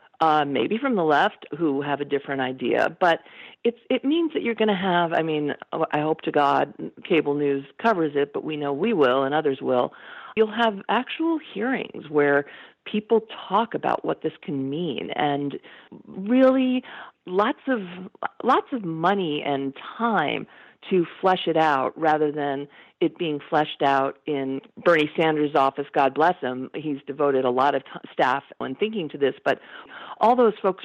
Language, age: English, 40-59